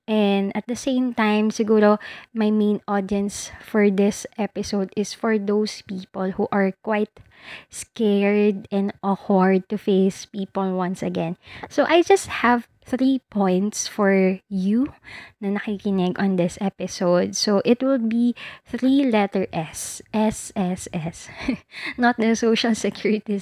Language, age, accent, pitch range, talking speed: Filipino, 20-39, native, 190-230 Hz, 135 wpm